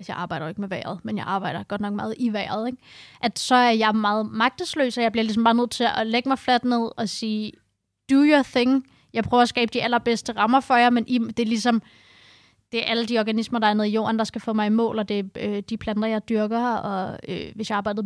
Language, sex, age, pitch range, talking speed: Danish, female, 20-39, 220-255 Hz, 275 wpm